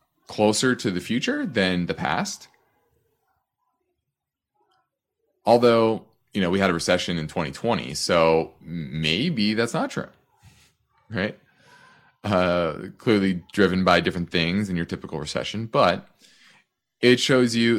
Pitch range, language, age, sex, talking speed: 95-125 Hz, English, 30-49, male, 120 wpm